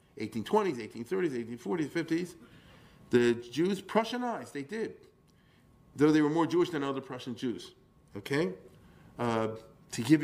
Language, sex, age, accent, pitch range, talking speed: English, male, 50-69, American, 125-175 Hz, 130 wpm